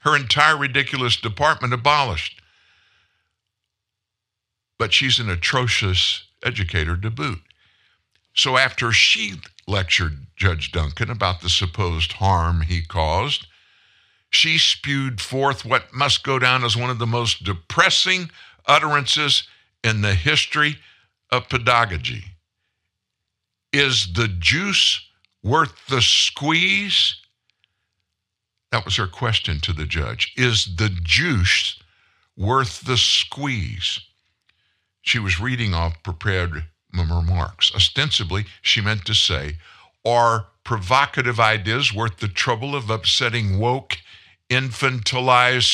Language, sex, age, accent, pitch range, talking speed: English, male, 60-79, American, 95-125 Hz, 110 wpm